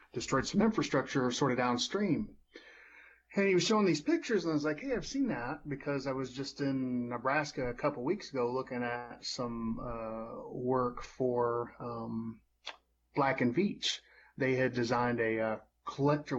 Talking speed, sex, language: 170 wpm, male, English